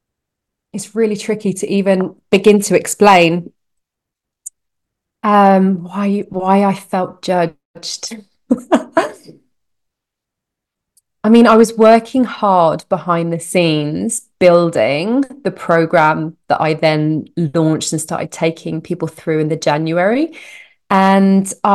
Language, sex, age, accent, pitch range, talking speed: English, female, 20-39, British, 180-225 Hz, 110 wpm